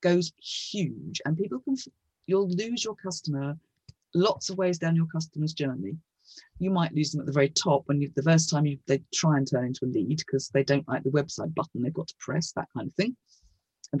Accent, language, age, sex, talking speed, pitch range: British, English, 40-59, female, 225 wpm, 145-190 Hz